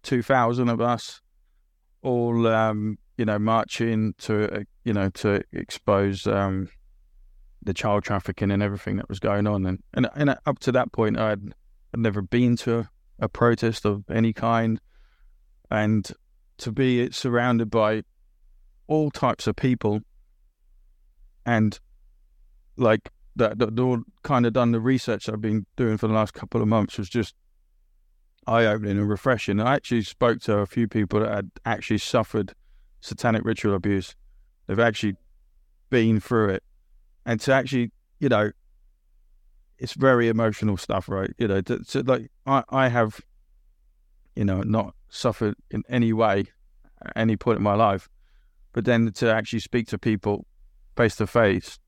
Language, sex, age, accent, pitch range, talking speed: English, male, 20-39, British, 95-115 Hz, 150 wpm